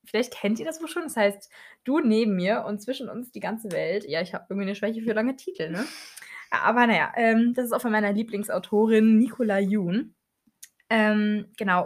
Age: 20-39